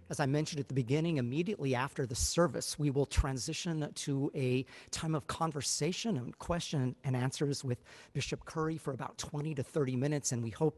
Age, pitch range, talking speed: 50-69, 125-150 Hz, 190 wpm